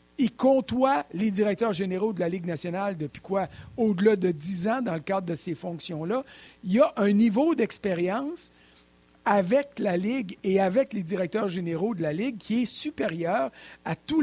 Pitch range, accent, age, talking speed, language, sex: 170-225 Hz, Canadian, 50-69, 180 wpm, French, male